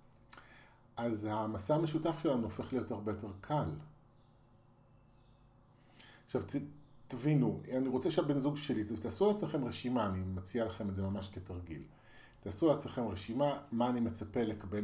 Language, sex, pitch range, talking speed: Hebrew, male, 105-130 Hz, 135 wpm